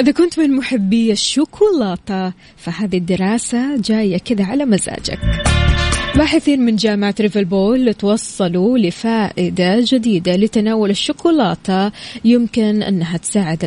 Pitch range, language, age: 185-230 Hz, Arabic, 20-39